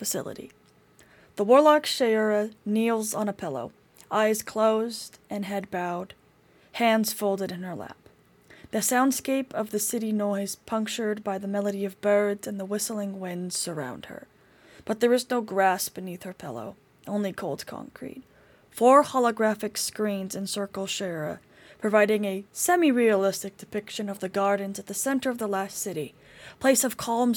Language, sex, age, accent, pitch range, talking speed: English, female, 20-39, American, 195-220 Hz, 150 wpm